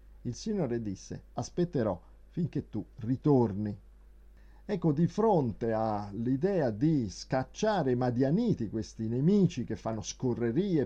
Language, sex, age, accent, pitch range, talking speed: Italian, male, 50-69, native, 115-175 Hz, 110 wpm